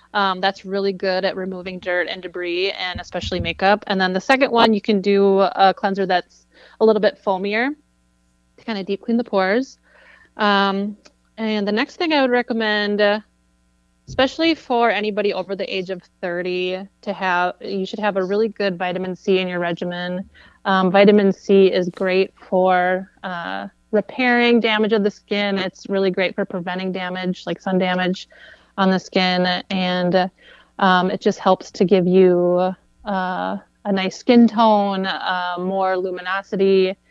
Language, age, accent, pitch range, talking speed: English, 30-49, American, 185-210 Hz, 165 wpm